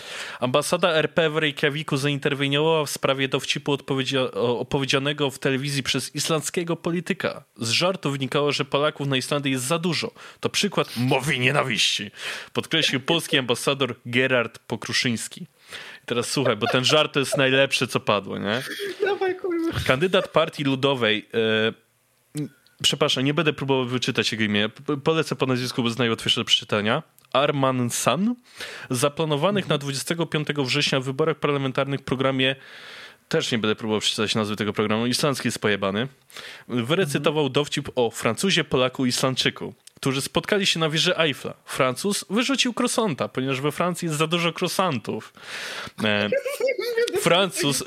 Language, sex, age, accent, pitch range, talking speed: Polish, male, 20-39, native, 135-190 Hz, 135 wpm